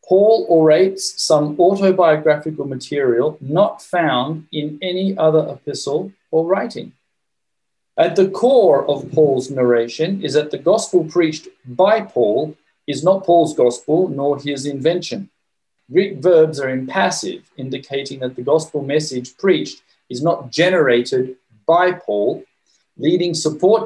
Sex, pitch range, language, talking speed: male, 135-180 Hz, English, 130 wpm